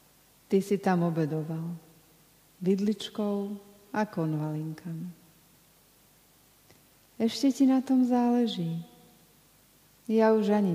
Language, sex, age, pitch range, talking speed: Slovak, female, 50-69, 160-200 Hz, 85 wpm